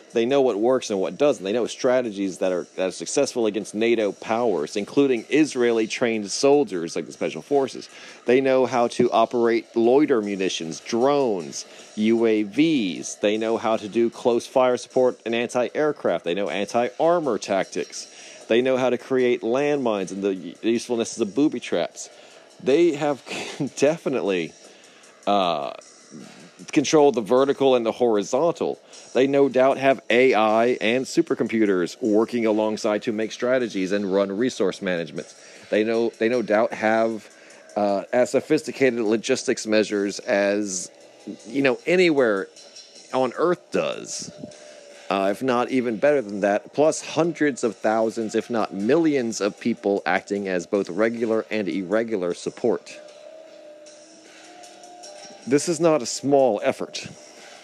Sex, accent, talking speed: male, American, 140 wpm